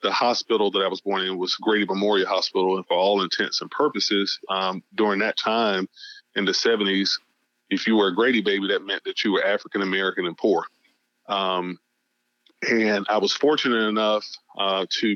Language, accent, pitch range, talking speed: English, American, 100-120 Hz, 180 wpm